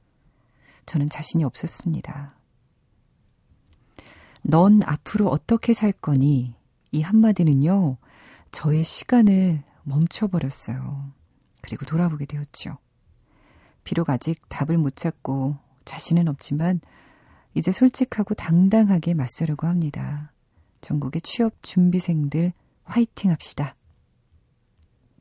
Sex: female